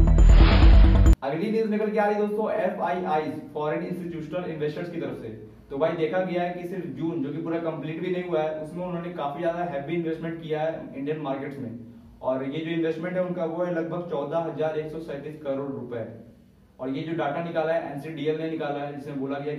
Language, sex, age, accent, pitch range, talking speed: Hindi, male, 20-39, native, 140-165 Hz, 195 wpm